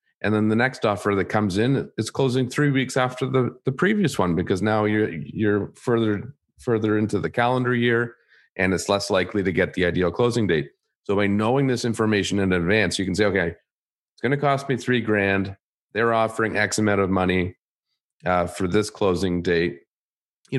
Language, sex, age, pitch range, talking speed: English, male, 40-59, 90-115 Hz, 190 wpm